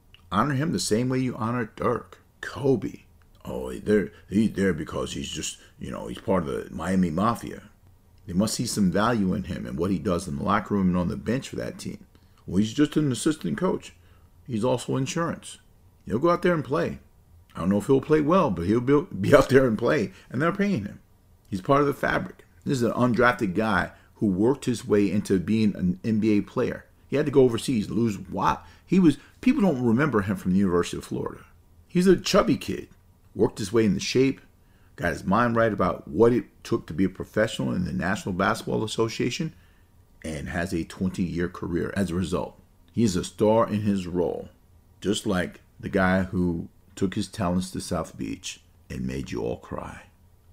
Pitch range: 90-120 Hz